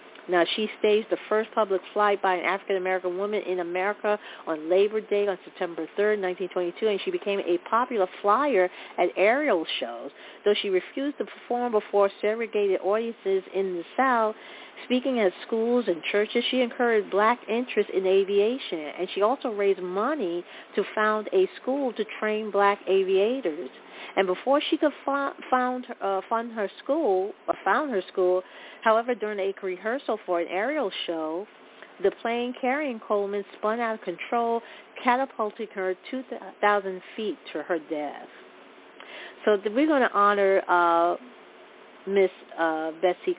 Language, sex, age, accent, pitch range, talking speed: English, female, 40-59, American, 185-230 Hz, 145 wpm